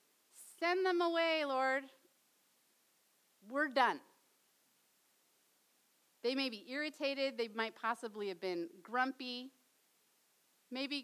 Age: 40-59